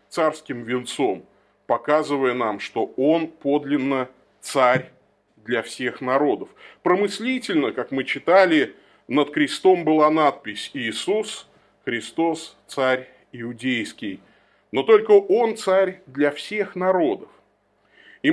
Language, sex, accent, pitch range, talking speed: Russian, male, native, 145-230 Hz, 100 wpm